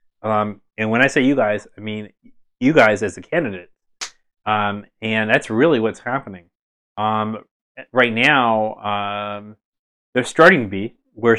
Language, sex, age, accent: English, male, 30-49, American